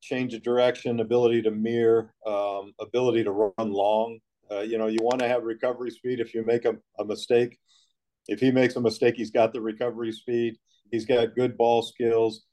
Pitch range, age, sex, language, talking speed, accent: 110-120 Hz, 50-69, male, English, 190 wpm, American